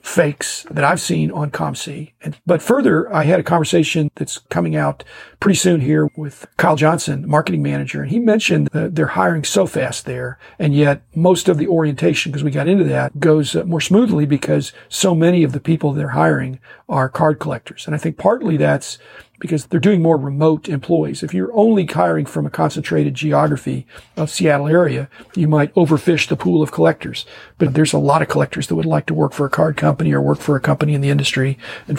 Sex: male